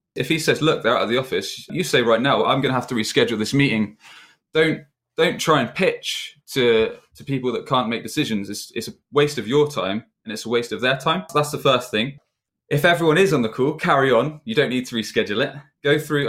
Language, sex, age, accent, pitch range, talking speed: English, male, 20-39, British, 105-135 Hz, 245 wpm